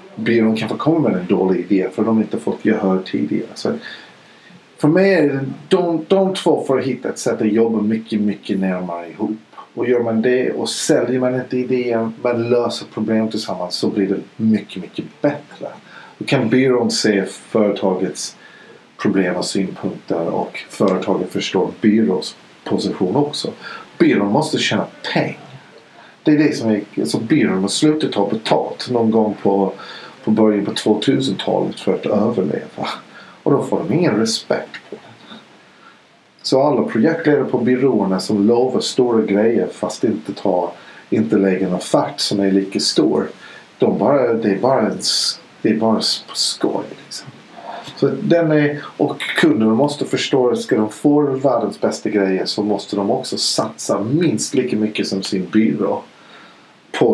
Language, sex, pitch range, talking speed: Swedish, male, 100-125 Hz, 155 wpm